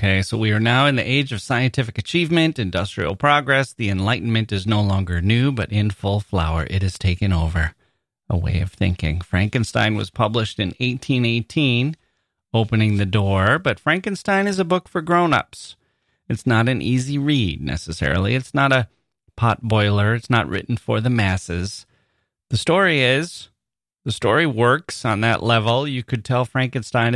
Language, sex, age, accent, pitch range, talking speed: English, male, 30-49, American, 95-125 Hz, 165 wpm